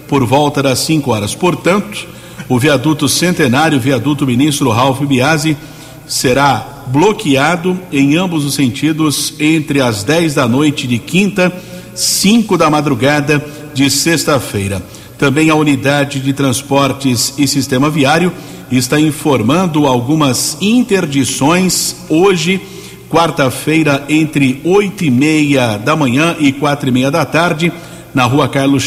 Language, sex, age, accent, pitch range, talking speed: Portuguese, male, 50-69, Brazilian, 130-155 Hz, 125 wpm